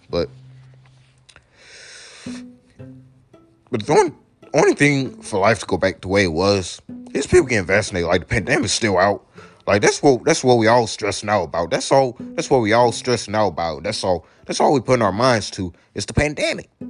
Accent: American